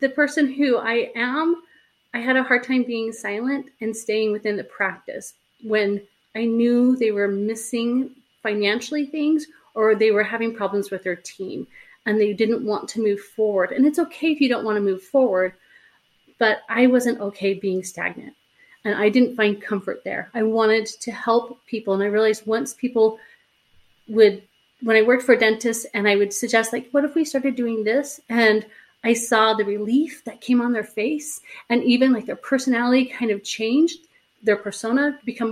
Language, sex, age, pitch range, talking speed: English, female, 30-49, 205-245 Hz, 185 wpm